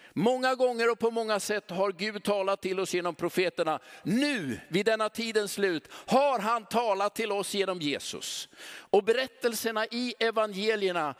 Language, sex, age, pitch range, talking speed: Swedish, male, 50-69, 195-245 Hz, 155 wpm